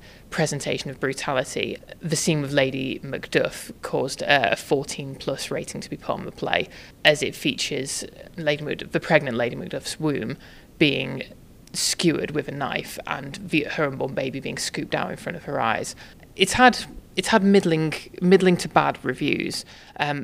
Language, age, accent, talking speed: English, 30-49, British, 165 wpm